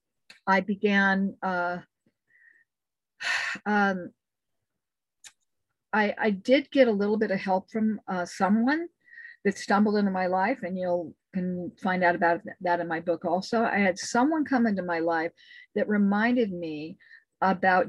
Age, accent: 50-69, American